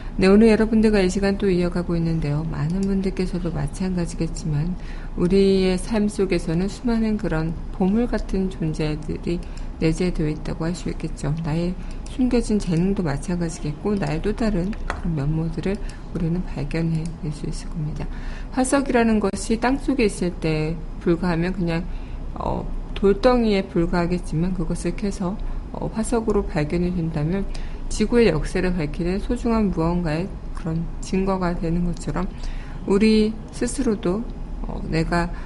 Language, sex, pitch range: Korean, female, 160-200 Hz